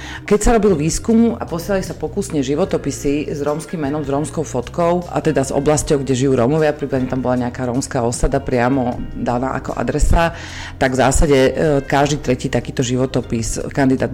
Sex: female